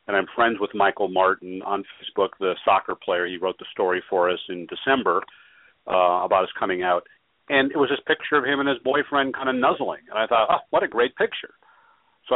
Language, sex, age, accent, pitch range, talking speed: English, male, 50-69, American, 110-155 Hz, 225 wpm